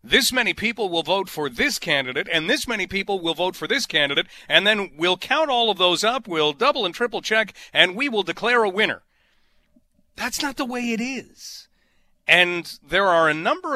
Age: 40-59